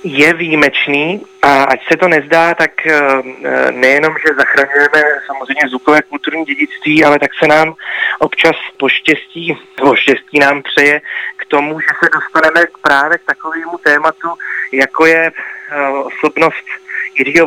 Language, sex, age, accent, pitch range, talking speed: Czech, male, 30-49, native, 145-170 Hz, 125 wpm